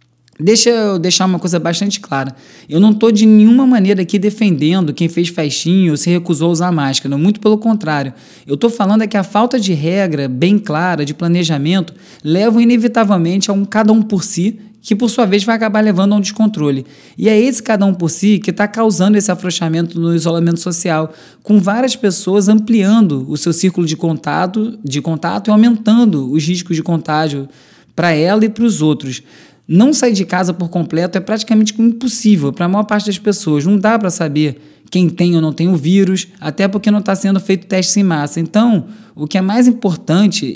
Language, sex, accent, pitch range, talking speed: Portuguese, male, Brazilian, 165-215 Hz, 200 wpm